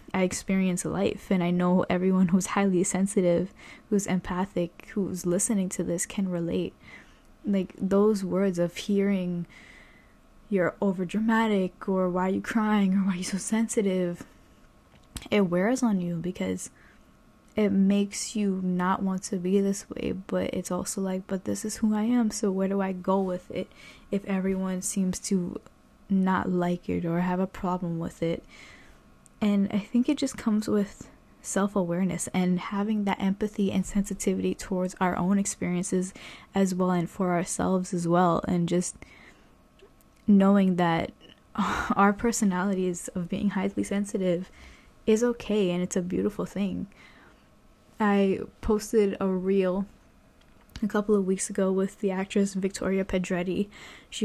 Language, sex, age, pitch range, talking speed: English, female, 10-29, 180-200 Hz, 150 wpm